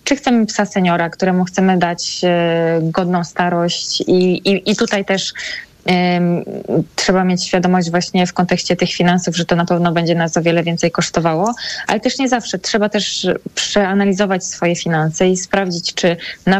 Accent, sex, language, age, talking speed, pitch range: native, female, Polish, 20-39, 165 wpm, 180-200 Hz